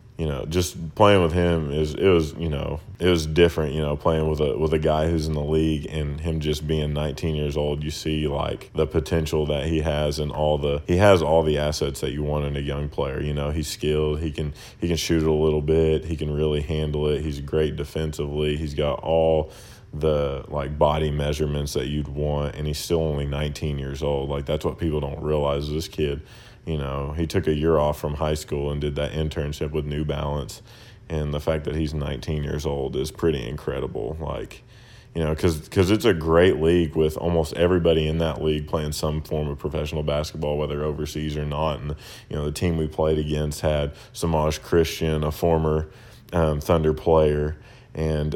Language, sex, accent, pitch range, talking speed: English, male, American, 75-80 Hz, 210 wpm